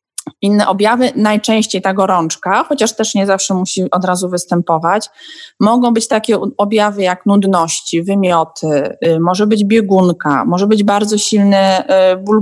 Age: 20-39